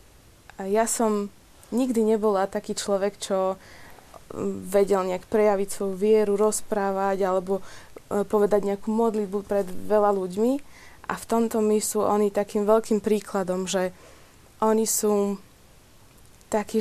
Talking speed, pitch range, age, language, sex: 120 wpm, 200-225 Hz, 20-39, Slovak, female